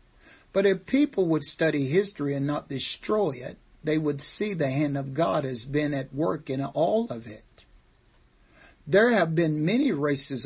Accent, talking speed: American, 170 wpm